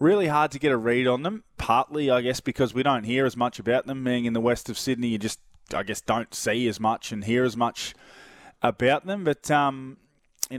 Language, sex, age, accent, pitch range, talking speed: English, male, 20-39, Australian, 115-130 Hz, 240 wpm